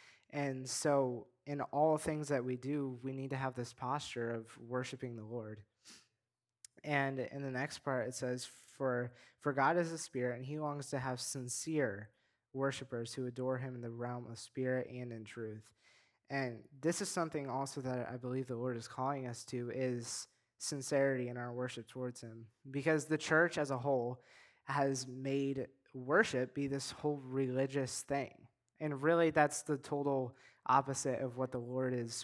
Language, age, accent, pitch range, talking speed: English, 20-39, American, 125-145 Hz, 175 wpm